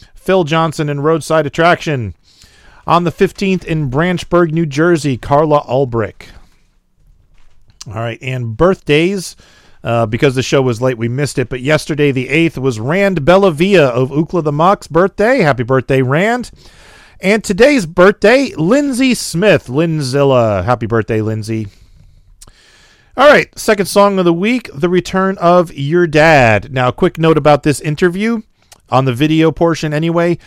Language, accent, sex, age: English, American, male, 40-59